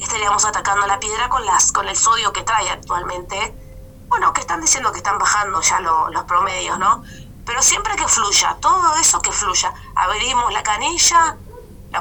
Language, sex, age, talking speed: Spanish, female, 20-39, 180 wpm